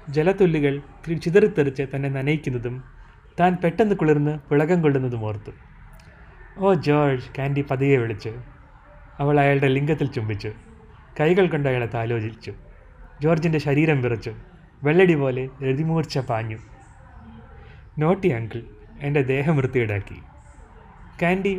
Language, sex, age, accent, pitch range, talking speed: Malayalam, male, 30-49, native, 110-155 Hz, 95 wpm